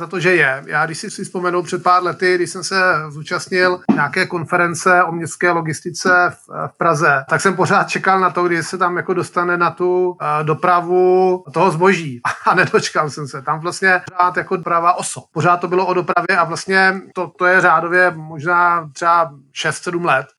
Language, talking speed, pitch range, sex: Czech, 190 wpm, 160-180 Hz, male